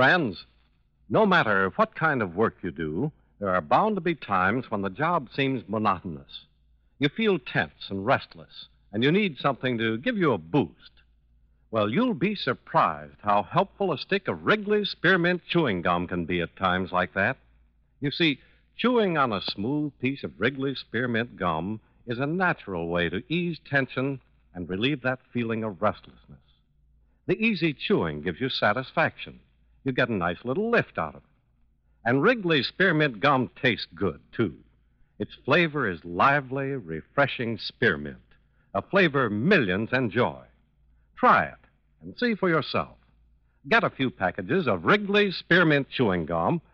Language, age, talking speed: English, 60-79, 160 wpm